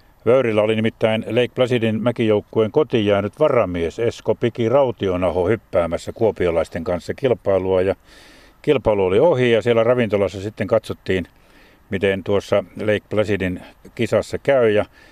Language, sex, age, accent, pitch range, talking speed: Finnish, male, 60-79, native, 100-120 Hz, 125 wpm